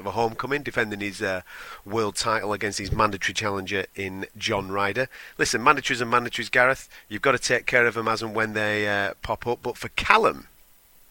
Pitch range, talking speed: 100-120 Hz, 200 wpm